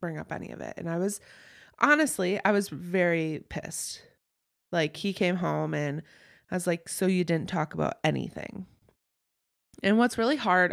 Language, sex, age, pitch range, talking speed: English, female, 20-39, 165-210 Hz, 175 wpm